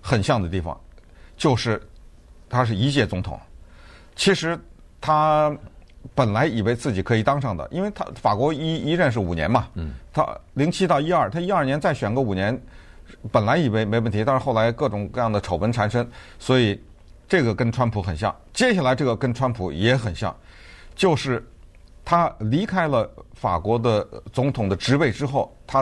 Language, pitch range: Chinese, 95-140 Hz